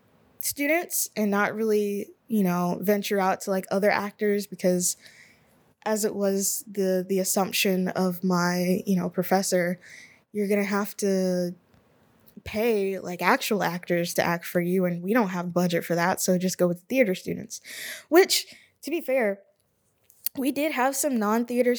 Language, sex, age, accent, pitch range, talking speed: English, female, 20-39, American, 185-230 Hz, 165 wpm